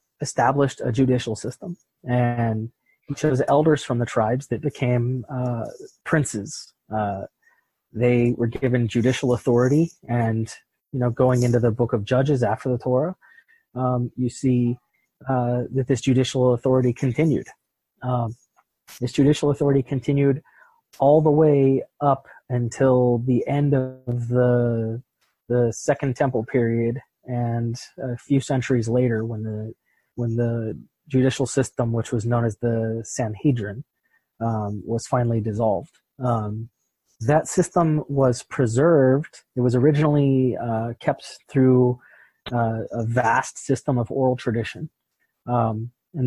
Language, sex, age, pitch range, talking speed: English, male, 30-49, 120-135 Hz, 130 wpm